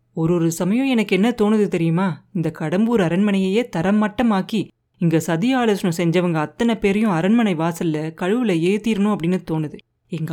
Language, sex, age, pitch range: Tamil, female, 30-49, 165-210 Hz